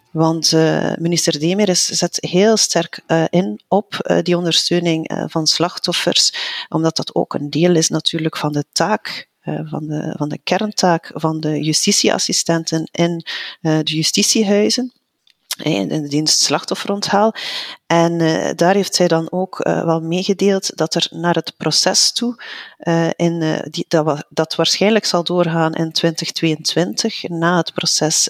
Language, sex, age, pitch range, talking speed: Dutch, female, 40-59, 160-180 Hz, 130 wpm